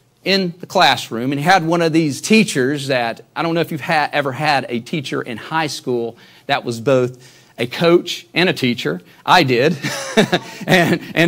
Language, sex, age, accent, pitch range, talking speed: English, male, 40-59, American, 120-160 Hz, 190 wpm